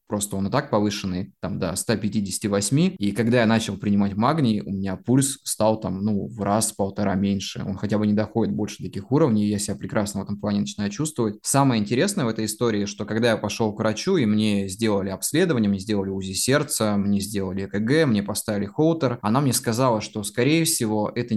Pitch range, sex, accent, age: 100-120 Hz, male, native, 20-39